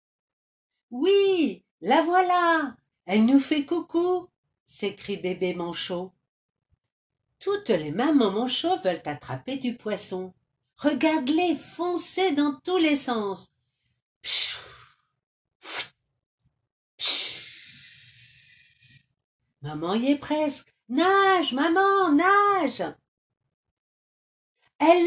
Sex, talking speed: female, 85 wpm